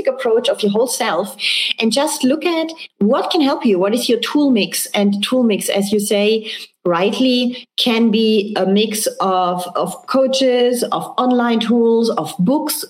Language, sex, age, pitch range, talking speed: English, female, 30-49, 195-250 Hz, 170 wpm